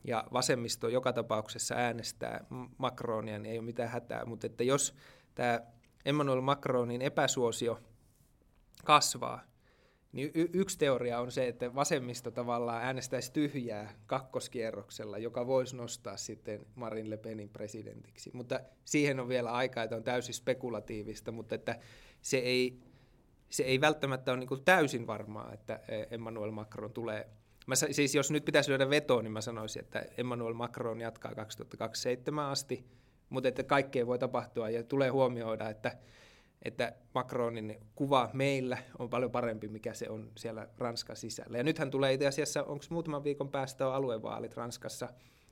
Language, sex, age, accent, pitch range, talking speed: Finnish, male, 20-39, native, 115-130 Hz, 140 wpm